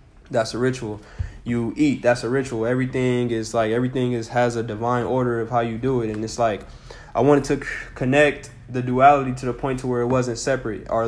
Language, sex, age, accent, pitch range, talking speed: English, male, 20-39, American, 110-130 Hz, 215 wpm